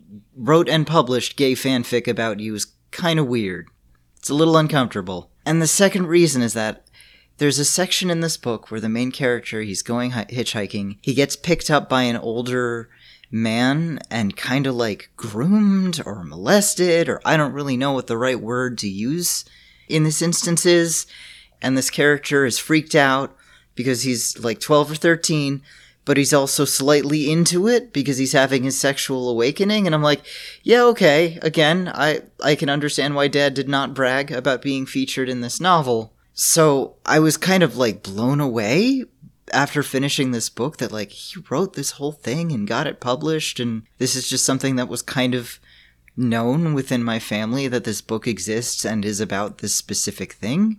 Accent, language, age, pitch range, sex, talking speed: American, English, 30-49, 120-155 Hz, male, 185 wpm